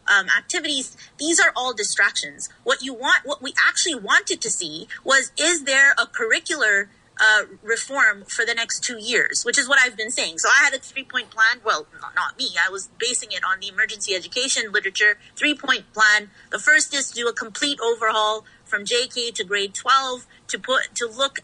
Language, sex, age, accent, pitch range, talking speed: English, female, 30-49, American, 210-270 Hz, 200 wpm